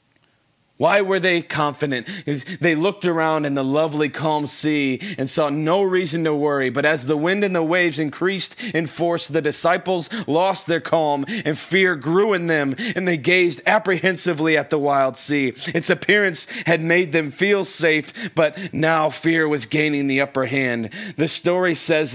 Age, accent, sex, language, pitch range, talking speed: 30-49, American, male, English, 135-170 Hz, 175 wpm